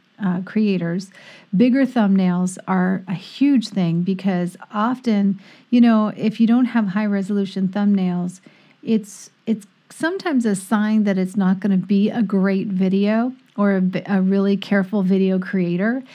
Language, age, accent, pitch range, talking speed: English, 40-59, American, 190-220 Hz, 150 wpm